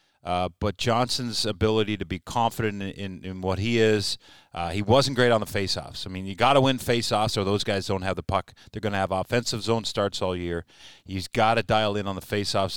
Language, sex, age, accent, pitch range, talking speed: English, male, 40-59, American, 95-115 Hz, 240 wpm